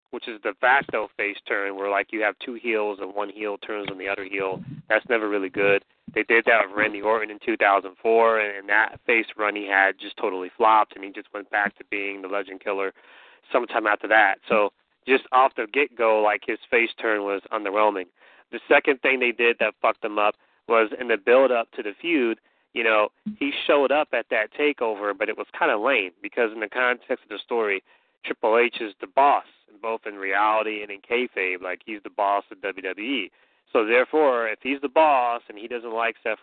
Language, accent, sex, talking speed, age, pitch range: English, American, male, 215 wpm, 30-49, 100-135 Hz